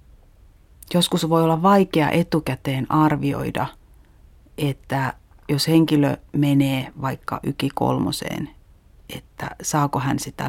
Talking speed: 95 wpm